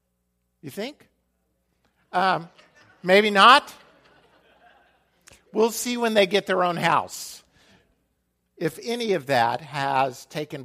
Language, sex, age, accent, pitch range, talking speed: English, male, 50-69, American, 125-190 Hz, 105 wpm